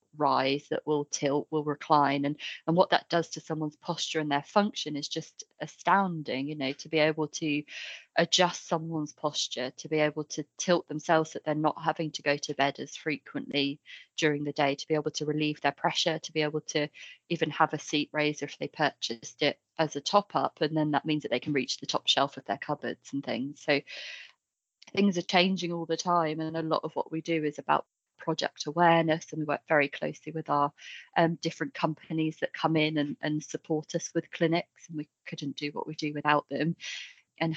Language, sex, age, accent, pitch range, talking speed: English, female, 20-39, British, 145-160 Hz, 215 wpm